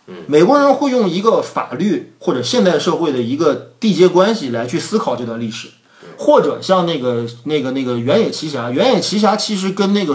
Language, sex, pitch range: Chinese, male, 125-195 Hz